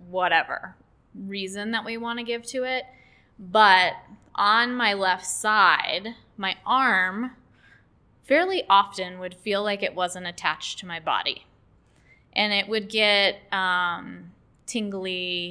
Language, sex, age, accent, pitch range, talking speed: English, female, 20-39, American, 175-195 Hz, 130 wpm